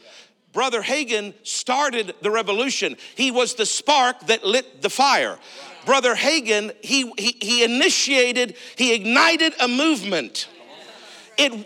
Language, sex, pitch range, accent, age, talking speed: English, male, 260-335 Hz, American, 50-69, 125 wpm